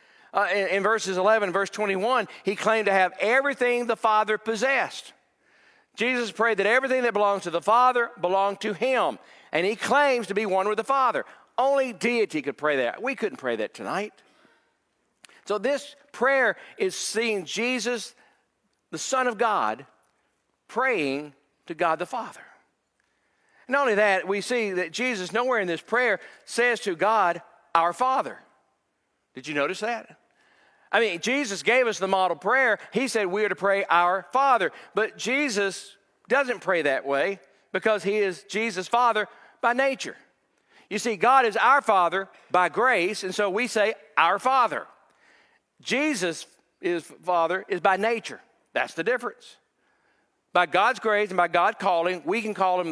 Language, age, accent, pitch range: English, 50-69, American, 185-250 Hz